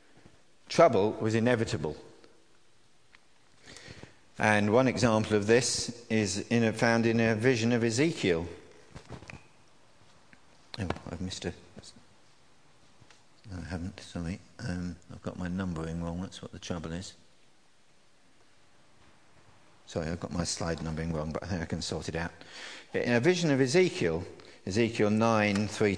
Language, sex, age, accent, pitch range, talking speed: English, male, 50-69, British, 90-125 Hz, 140 wpm